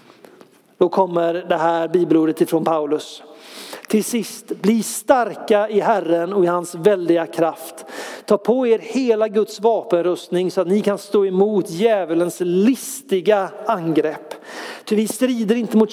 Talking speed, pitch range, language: 145 wpm, 175-220 Hz, Swedish